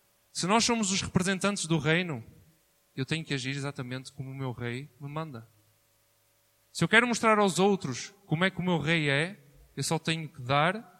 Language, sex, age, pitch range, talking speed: Portuguese, male, 20-39, 125-175 Hz, 195 wpm